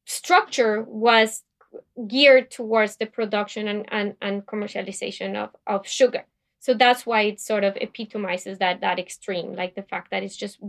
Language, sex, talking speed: English, female, 165 wpm